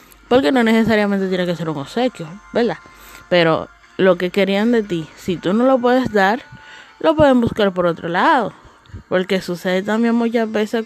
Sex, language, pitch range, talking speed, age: female, Spanish, 160-220 Hz, 175 wpm, 20-39